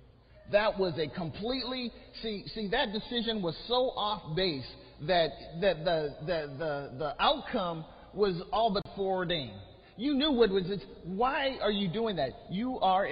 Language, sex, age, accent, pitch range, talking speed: English, male, 50-69, American, 155-240 Hz, 165 wpm